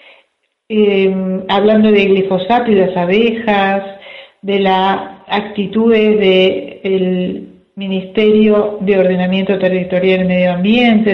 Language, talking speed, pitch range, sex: Spanish, 110 wpm, 190-220 Hz, female